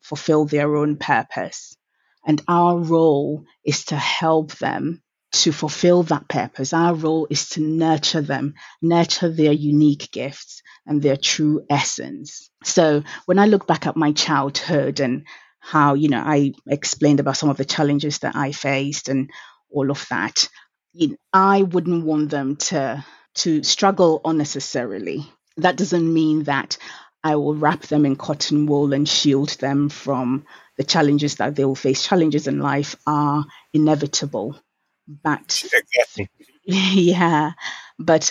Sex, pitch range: female, 145-165 Hz